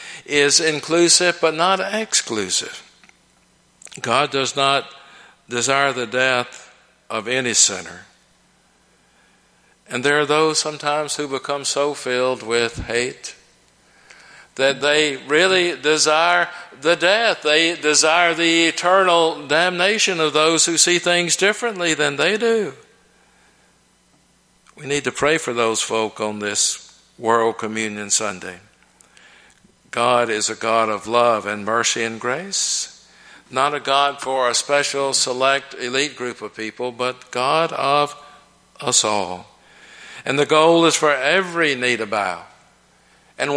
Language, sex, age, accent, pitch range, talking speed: English, male, 60-79, American, 120-160 Hz, 130 wpm